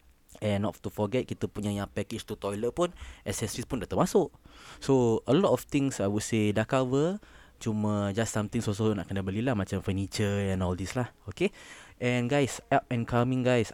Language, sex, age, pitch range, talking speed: Malay, male, 20-39, 100-125 Hz, 200 wpm